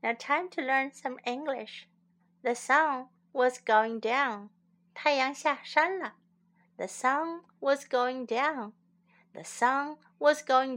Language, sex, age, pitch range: Chinese, female, 60-79, 185-265 Hz